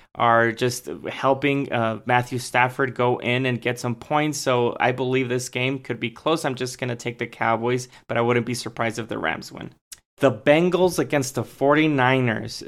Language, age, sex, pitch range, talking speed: English, 20-39, male, 120-135 Hz, 190 wpm